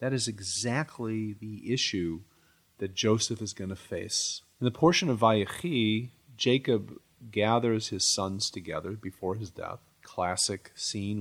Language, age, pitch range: English, 40-59, 95-115 Hz